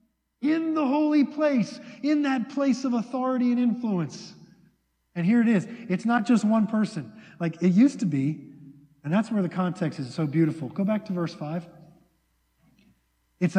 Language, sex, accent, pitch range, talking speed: English, male, American, 160-220 Hz, 175 wpm